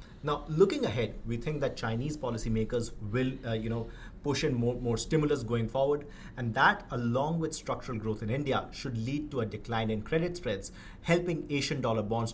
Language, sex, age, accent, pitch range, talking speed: English, male, 30-49, Indian, 115-145 Hz, 190 wpm